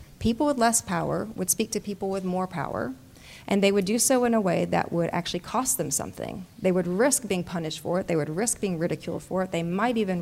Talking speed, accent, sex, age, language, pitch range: 245 wpm, American, female, 30-49, English, 165-210 Hz